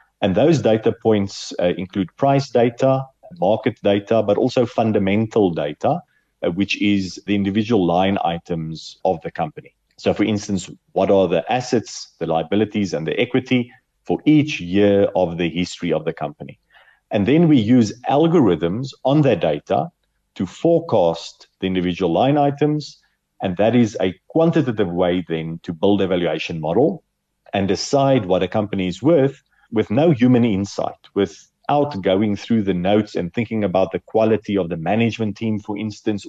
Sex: male